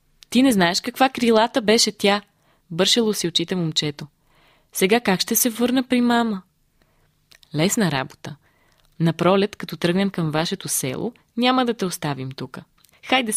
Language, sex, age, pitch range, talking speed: Bulgarian, female, 20-39, 155-210 Hz, 150 wpm